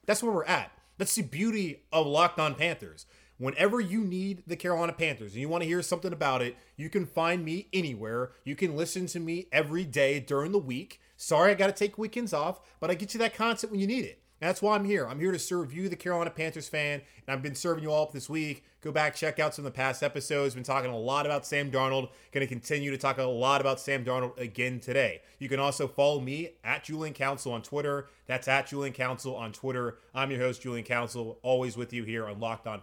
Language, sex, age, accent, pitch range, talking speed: English, male, 30-49, American, 135-180 Hz, 245 wpm